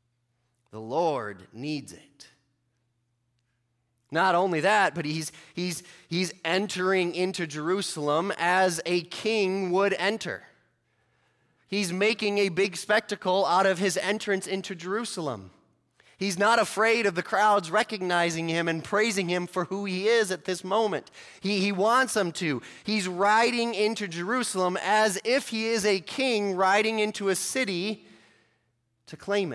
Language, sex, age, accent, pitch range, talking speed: English, male, 30-49, American, 150-200 Hz, 140 wpm